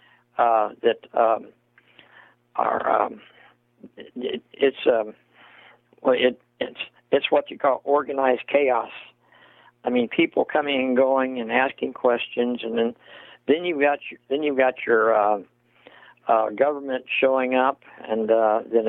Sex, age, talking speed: male, 60-79, 140 wpm